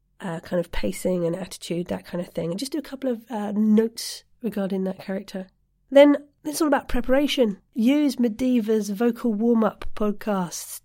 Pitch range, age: 195-235 Hz, 40-59